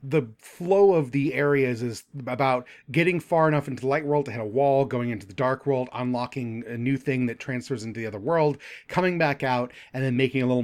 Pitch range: 125-165 Hz